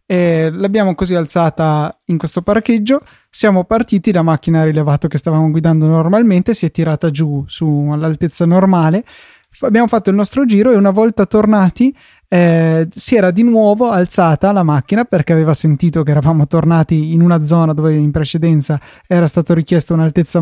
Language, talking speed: Italian, 165 wpm